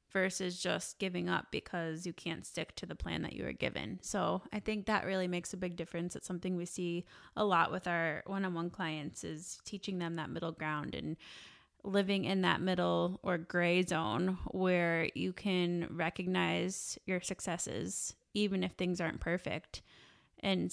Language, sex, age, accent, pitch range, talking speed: English, female, 20-39, American, 170-190 Hz, 175 wpm